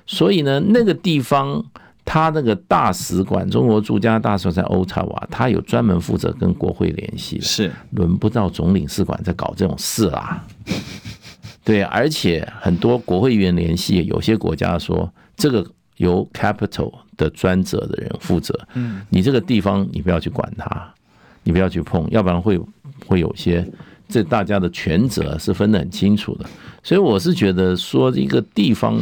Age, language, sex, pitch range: 50-69, Chinese, male, 90-115 Hz